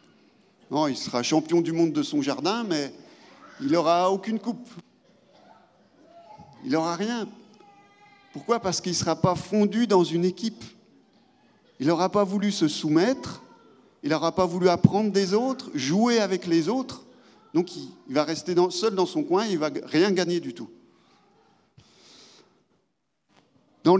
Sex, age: male, 40-59